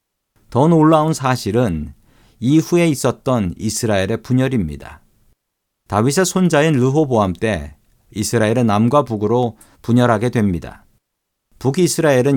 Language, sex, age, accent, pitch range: Korean, male, 50-69, native, 100-135 Hz